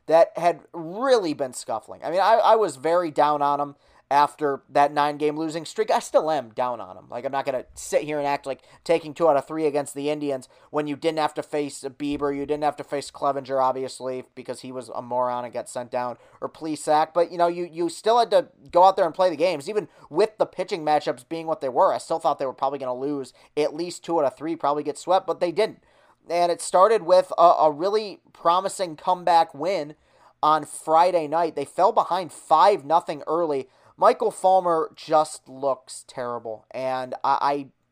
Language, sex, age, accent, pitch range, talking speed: English, male, 30-49, American, 140-170 Hz, 220 wpm